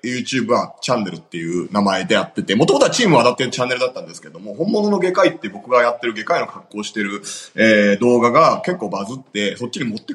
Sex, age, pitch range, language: male, 30-49, 115-180 Hz, Japanese